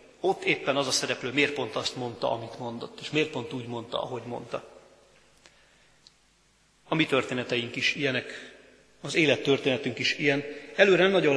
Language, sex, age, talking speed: Hungarian, male, 40-59, 160 wpm